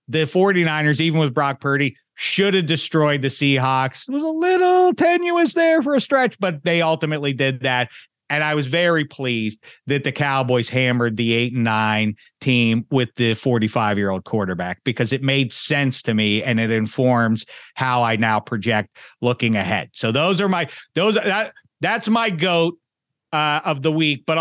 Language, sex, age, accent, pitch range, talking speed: English, male, 40-59, American, 115-155 Hz, 180 wpm